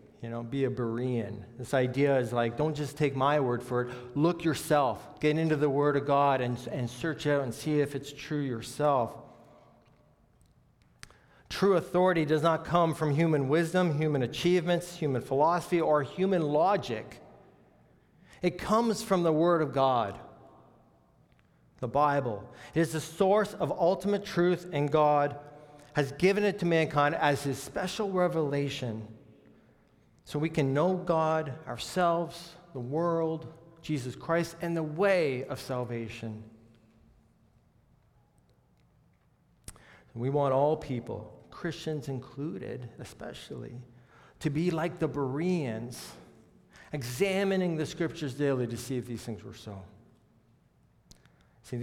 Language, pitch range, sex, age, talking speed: English, 125-165 Hz, male, 40-59, 135 wpm